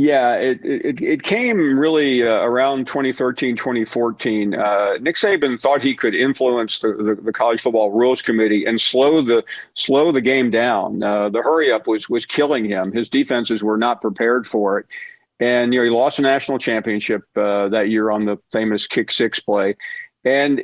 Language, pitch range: English, 115-145 Hz